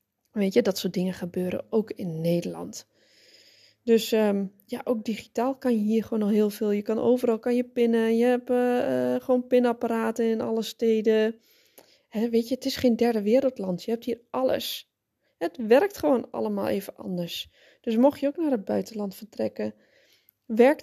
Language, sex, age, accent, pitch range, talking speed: Dutch, female, 20-39, Dutch, 210-250 Hz, 175 wpm